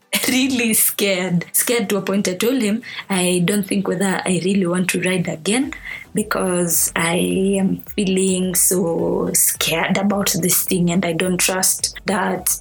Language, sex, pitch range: English, female, 175-210 Hz